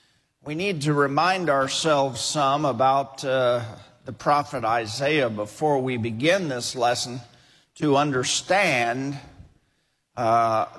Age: 50-69